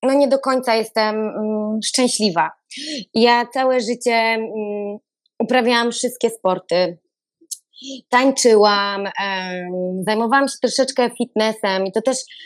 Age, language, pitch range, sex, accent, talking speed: 20-39, Polish, 215-255 Hz, female, native, 95 wpm